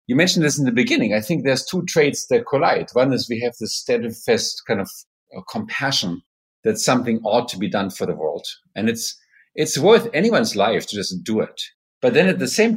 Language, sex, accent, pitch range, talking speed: English, male, German, 100-130 Hz, 215 wpm